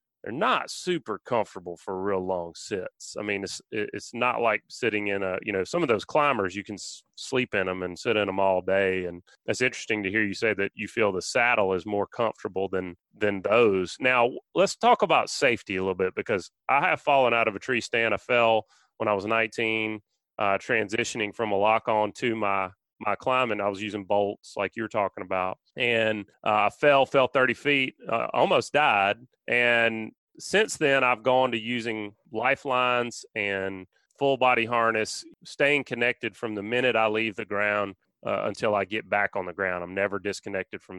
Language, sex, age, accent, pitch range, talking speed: English, male, 30-49, American, 100-130 Hz, 200 wpm